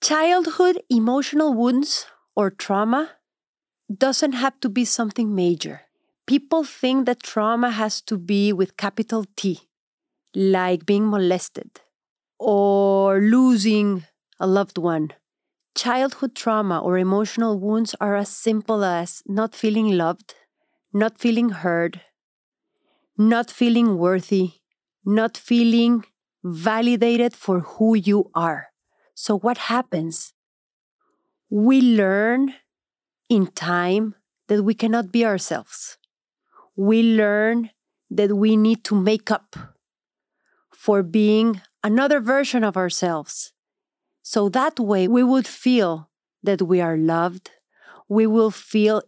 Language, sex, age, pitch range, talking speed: English, female, 30-49, 190-240 Hz, 115 wpm